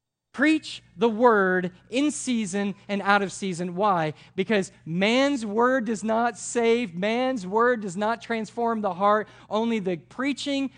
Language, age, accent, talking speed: English, 40-59, American, 145 wpm